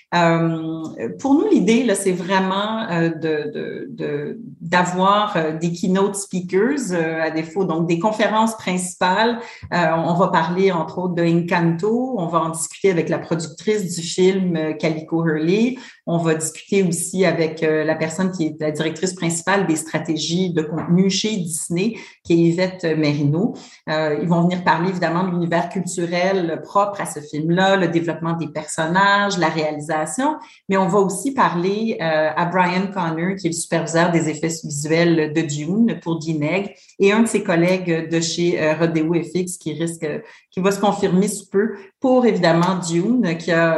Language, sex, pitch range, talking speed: French, female, 165-200 Hz, 160 wpm